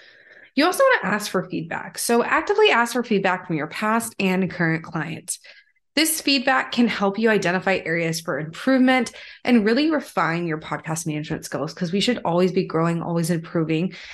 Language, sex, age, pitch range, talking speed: English, female, 20-39, 170-235 Hz, 180 wpm